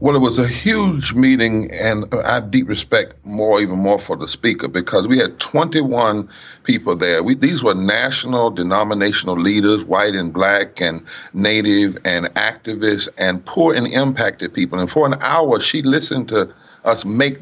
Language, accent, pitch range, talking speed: English, American, 110-150 Hz, 170 wpm